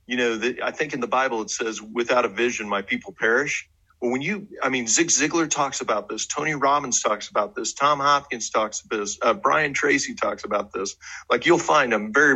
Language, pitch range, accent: English, 105-135 Hz, American